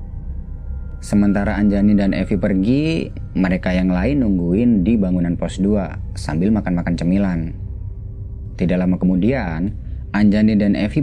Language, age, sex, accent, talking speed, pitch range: Indonesian, 30-49, male, native, 120 wpm, 85-110 Hz